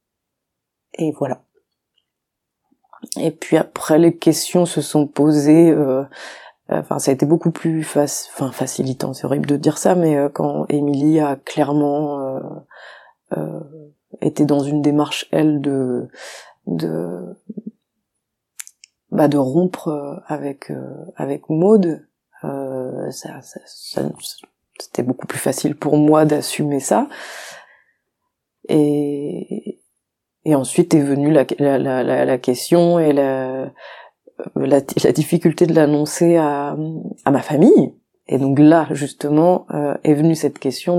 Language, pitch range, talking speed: French, 140-165 Hz, 130 wpm